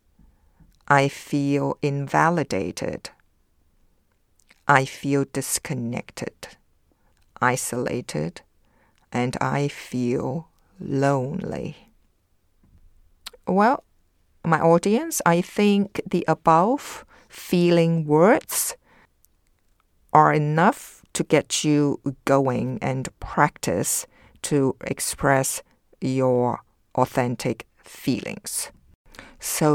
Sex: female